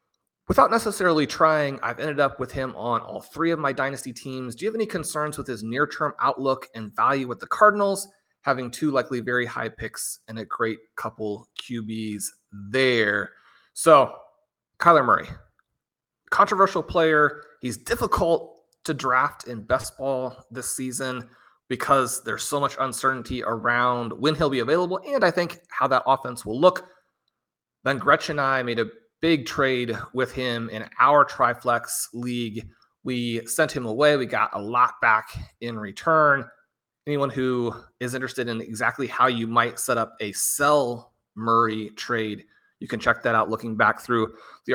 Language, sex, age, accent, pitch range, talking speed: English, male, 30-49, American, 115-155 Hz, 165 wpm